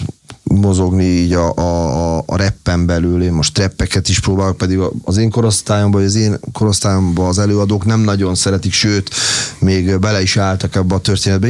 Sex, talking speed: male, 170 wpm